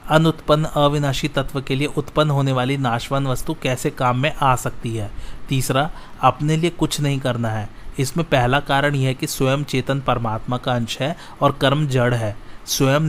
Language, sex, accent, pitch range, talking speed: Hindi, male, native, 125-145 Hz, 185 wpm